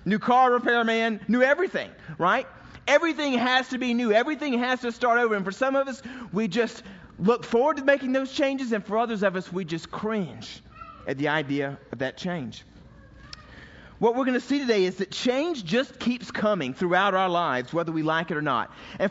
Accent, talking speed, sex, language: American, 205 wpm, male, English